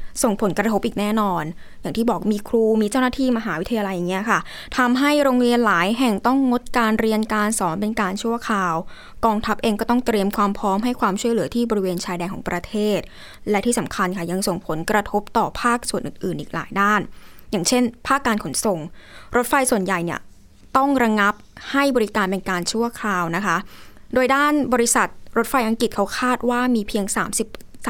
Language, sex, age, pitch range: Thai, female, 20-39, 190-240 Hz